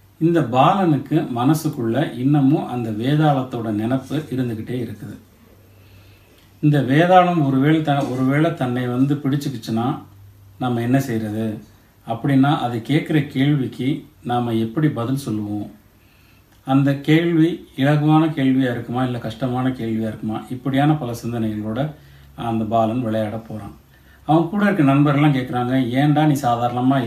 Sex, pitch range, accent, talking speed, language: male, 110-145 Hz, native, 115 wpm, Tamil